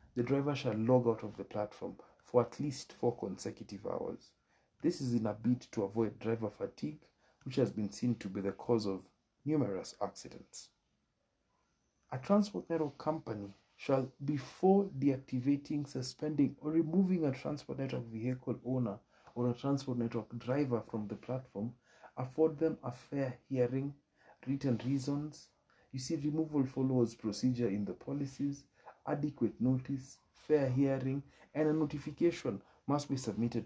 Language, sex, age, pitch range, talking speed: English, male, 50-69, 120-145 Hz, 145 wpm